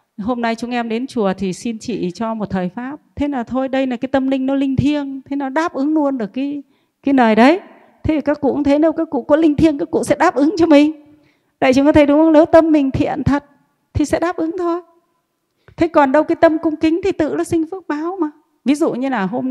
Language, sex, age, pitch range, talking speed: Vietnamese, female, 30-49, 205-295 Hz, 270 wpm